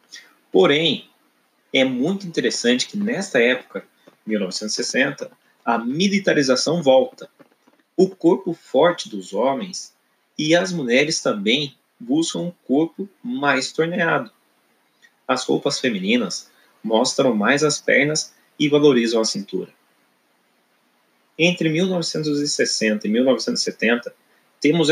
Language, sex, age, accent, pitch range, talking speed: Portuguese, male, 30-49, Brazilian, 130-180 Hz, 100 wpm